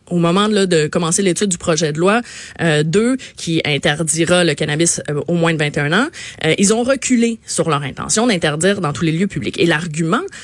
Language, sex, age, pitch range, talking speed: French, female, 20-39, 165-230 Hz, 215 wpm